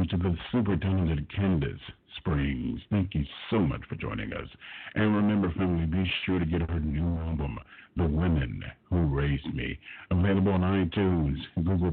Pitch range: 80-95 Hz